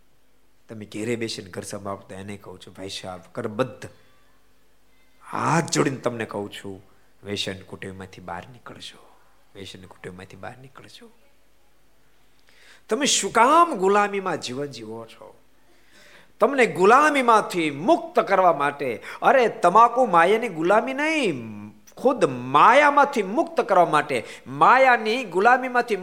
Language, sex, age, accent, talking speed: Gujarati, male, 50-69, native, 80 wpm